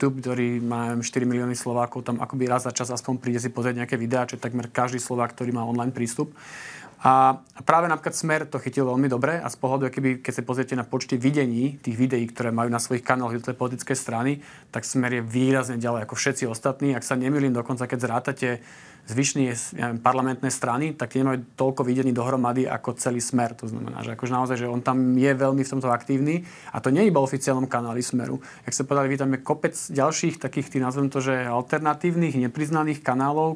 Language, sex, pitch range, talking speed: Slovak, male, 125-140 Hz, 205 wpm